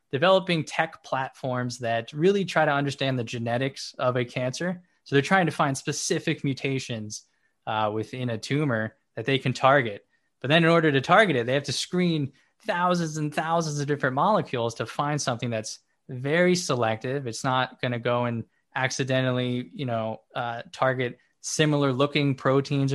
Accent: American